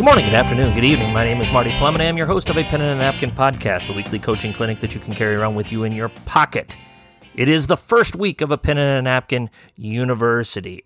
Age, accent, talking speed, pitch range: 40-59, American, 270 wpm, 110-145 Hz